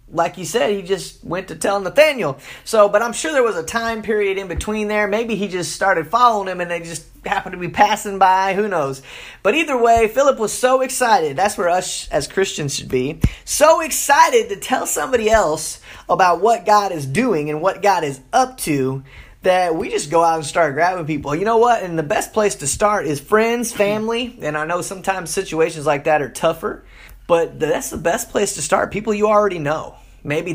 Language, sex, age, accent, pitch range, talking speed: English, male, 20-39, American, 160-230 Hz, 215 wpm